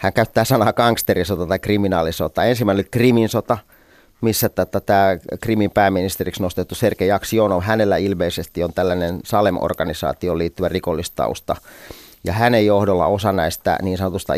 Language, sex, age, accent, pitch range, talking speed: Finnish, male, 30-49, native, 90-105 Hz, 145 wpm